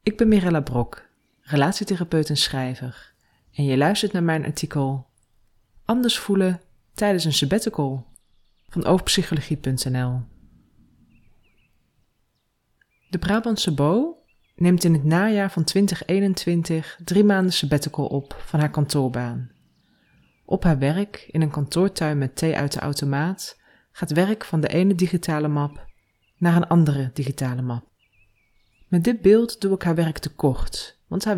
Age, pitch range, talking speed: 20-39, 135-185 Hz, 135 wpm